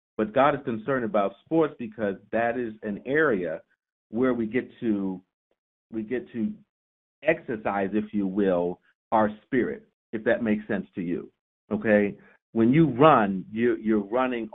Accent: American